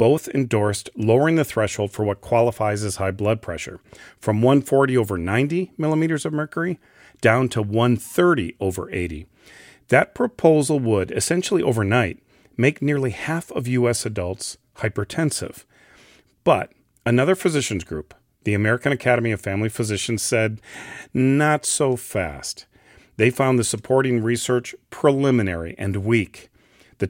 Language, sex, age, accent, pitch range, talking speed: English, male, 40-59, American, 105-135 Hz, 130 wpm